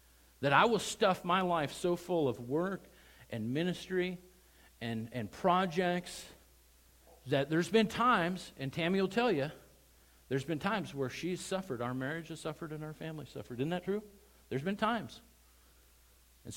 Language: English